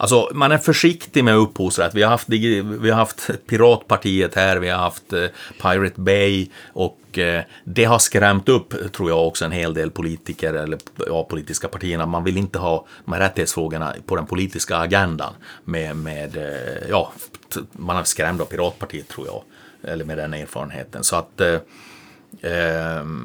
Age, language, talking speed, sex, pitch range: 30-49, Swedish, 165 wpm, male, 85-105 Hz